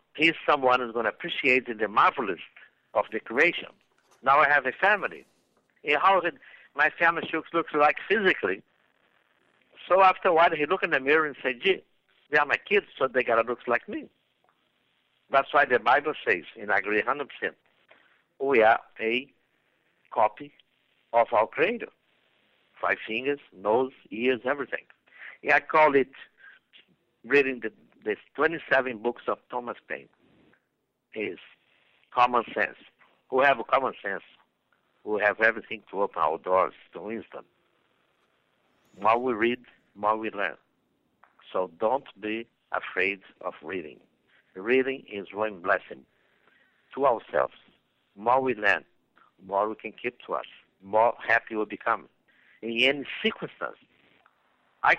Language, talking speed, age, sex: English, 145 wpm, 60-79, male